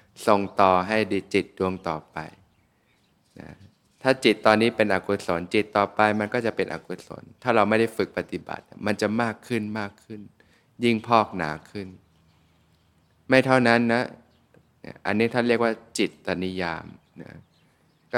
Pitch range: 90-110 Hz